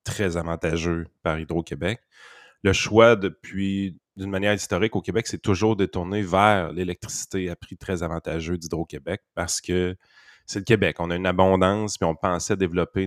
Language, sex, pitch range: French, male, 85-100 Hz